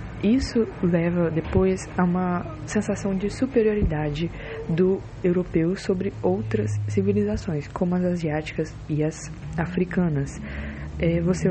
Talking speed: 110 wpm